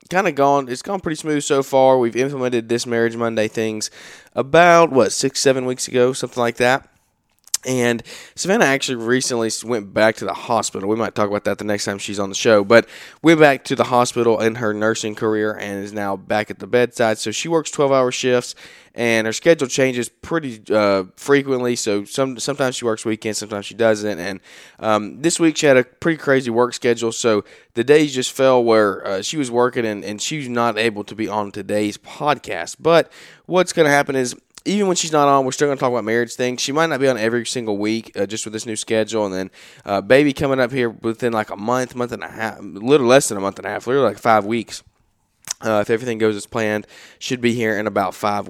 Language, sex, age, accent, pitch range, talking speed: English, male, 20-39, American, 110-135 Hz, 230 wpm